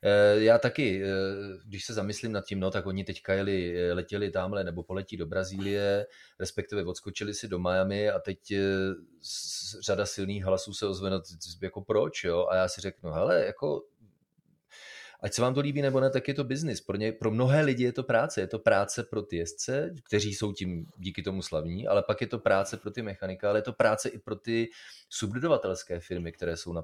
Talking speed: 205 wpm